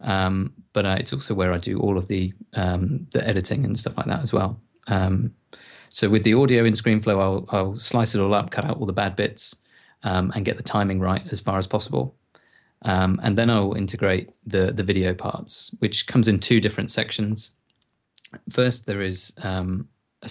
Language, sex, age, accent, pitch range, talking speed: English, male, 30-49, British, 95-110 Hz, 205 wpm